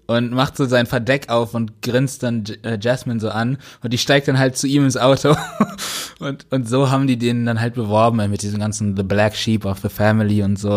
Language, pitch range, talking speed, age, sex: German, 100-130 Hz, 230 wpm, 20-39, male